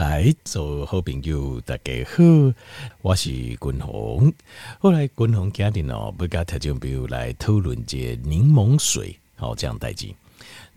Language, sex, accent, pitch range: Chinese, male, native, 85-130 Hz